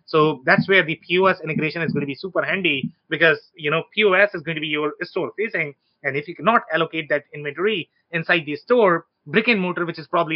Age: 30-49